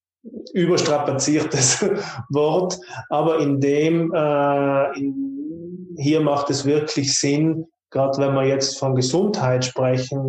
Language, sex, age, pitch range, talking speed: German, male, 20-39, 135-160 Hz, 105 wpm